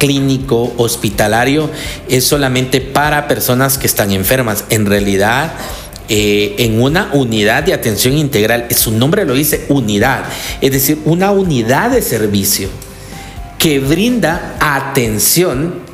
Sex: male